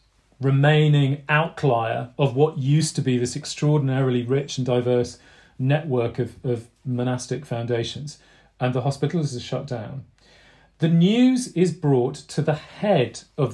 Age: 40-59